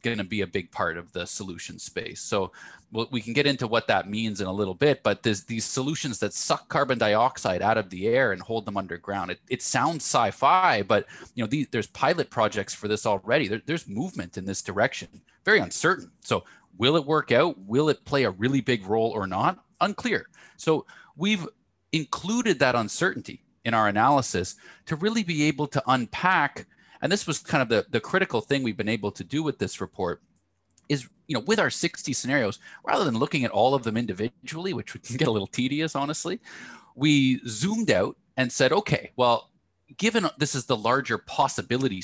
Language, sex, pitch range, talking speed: English, male, 105-150 Hz, 205 wpm